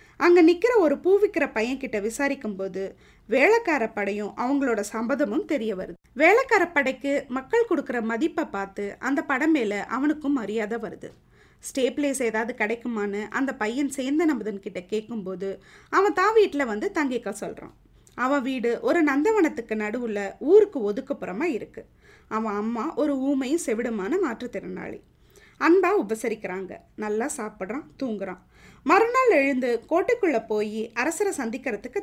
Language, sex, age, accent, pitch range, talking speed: Tamil, female, 20-39, native, 220-310 Hz, 120 wpm